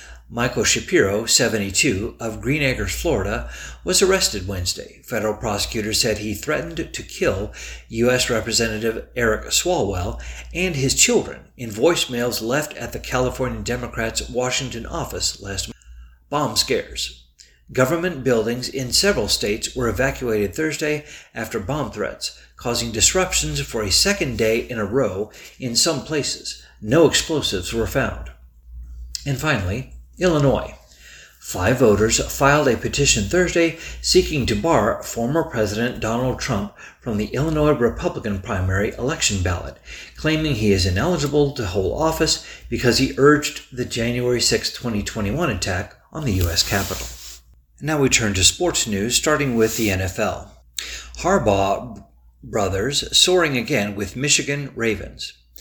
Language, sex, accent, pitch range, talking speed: English, male, American, 100-135 Hz, 135 wpm